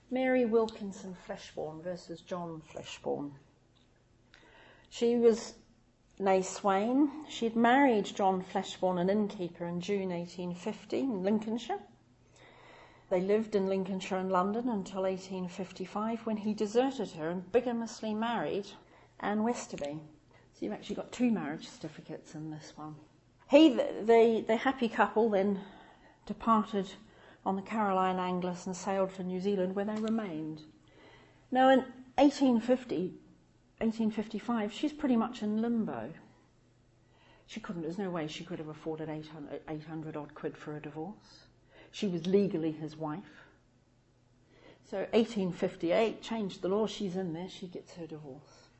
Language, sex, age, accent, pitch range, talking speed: English, female, 40-59, British, 165-220 Hz, 135 wpm